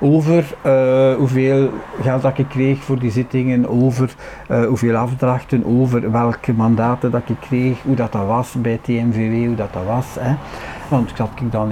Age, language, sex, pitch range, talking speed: 60-79, Dutch, male, 115-140 Hz, 180 wpm